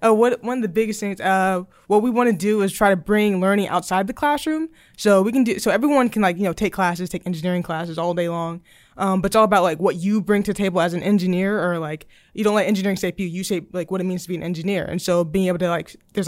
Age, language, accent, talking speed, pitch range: 20-39, English, American, 290 wpm, 175-205 Hz